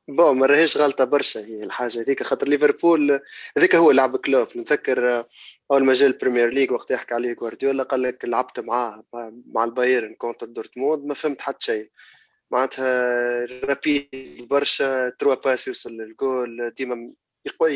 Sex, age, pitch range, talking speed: male, 20-39, 115-140 Hz, 150 wpm